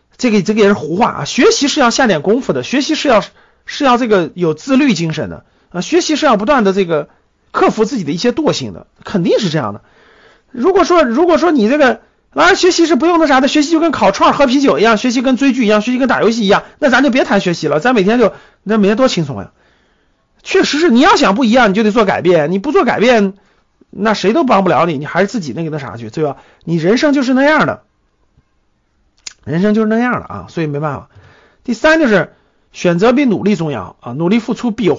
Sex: male